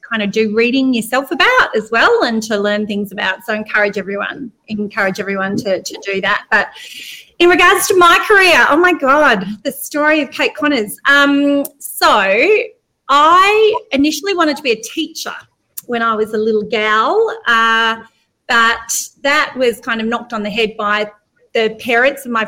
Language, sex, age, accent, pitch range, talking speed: English, female, 30-49, Australian, 210-295 Hz, 175 wpm